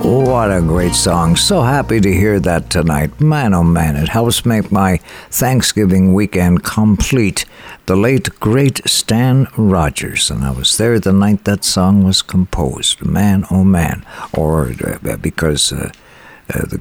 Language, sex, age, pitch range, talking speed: English, male, 60-79, 90-120 Hz, 155 wpm